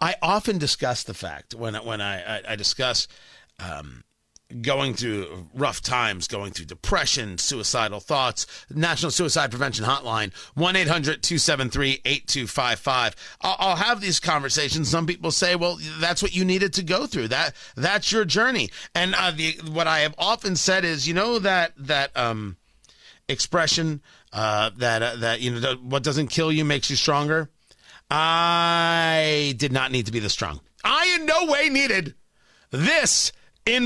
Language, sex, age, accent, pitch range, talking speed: English, male, 40-59, American, 115-185 Hz, 160 wpm